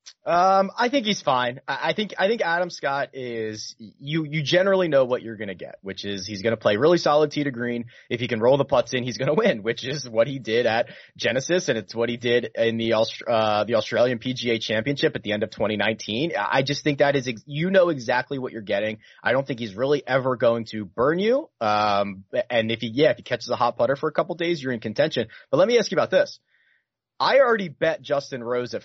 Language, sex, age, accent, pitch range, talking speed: English, male, 30-49, American, 115-155 Hz, 250 wpm